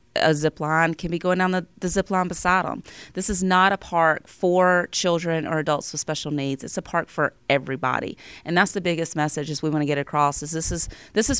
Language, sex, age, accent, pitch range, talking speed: English, female, 30-49, American, 155-185 Hz, 230 wpm